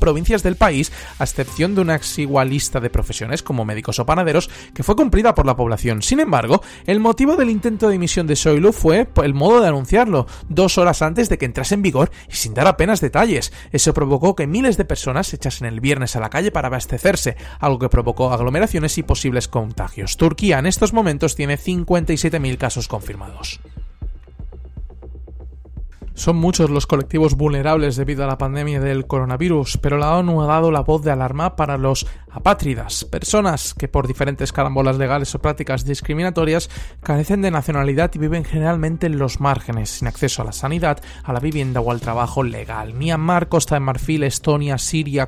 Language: Spanish